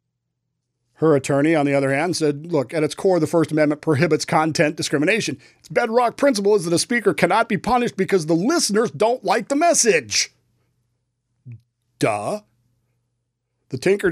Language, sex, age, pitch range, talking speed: English, male, 40-59, 140-205 Hz, 155 wpm